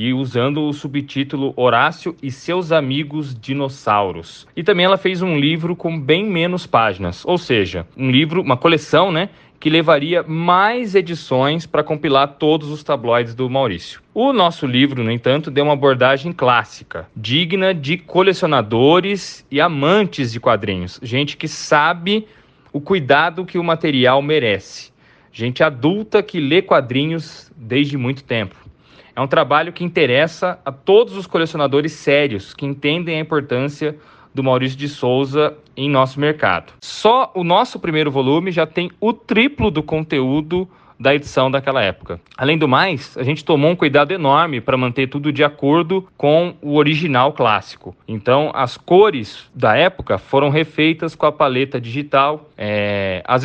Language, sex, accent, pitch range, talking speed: Portuguese, male, Brazilian, 135-170 Hz, 155 wpm